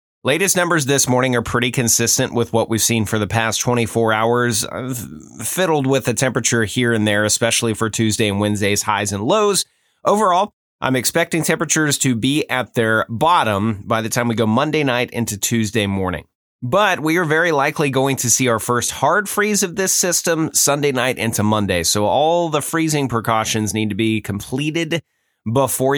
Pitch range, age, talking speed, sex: 110-145 Hz, 30-49, 180 wpm, male